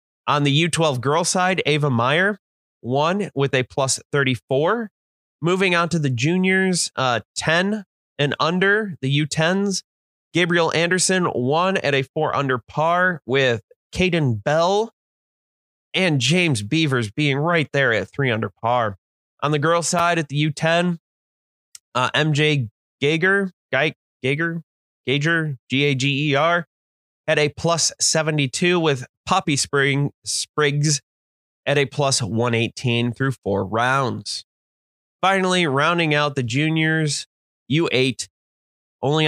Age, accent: 30-49, American